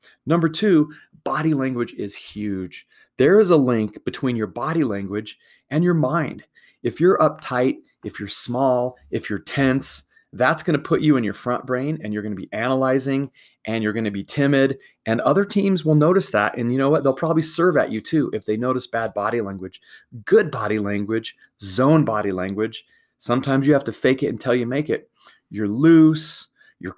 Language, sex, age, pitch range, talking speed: English, male, 30-49, 110-145 Hz, 190 wpm